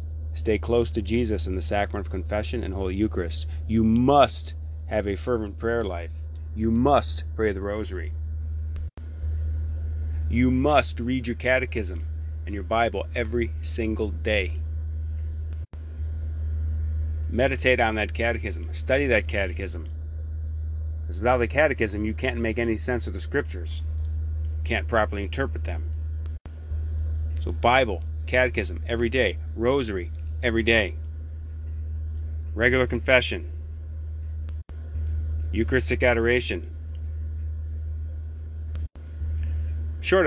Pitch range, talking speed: 80-85 Hz, 105 wpm